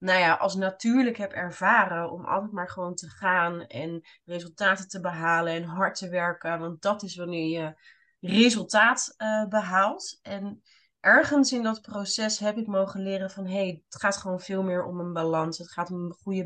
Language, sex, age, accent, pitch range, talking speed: Dutch, female, 20-39, Dutch, 170-195 Hz, 190 wpm